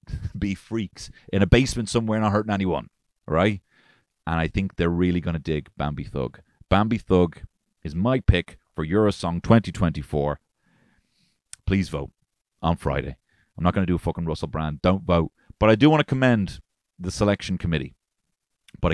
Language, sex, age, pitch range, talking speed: English, male, 30-49, 80-100 Hz, 170 wpm